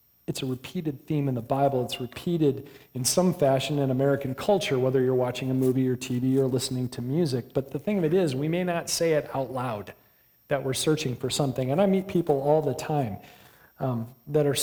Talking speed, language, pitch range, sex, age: 220 wpm, English, 130-160 Hz, male, 40-59